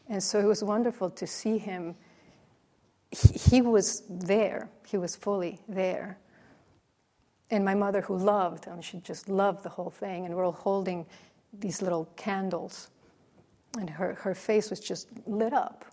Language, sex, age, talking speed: English, female, 40-59, 165 wpm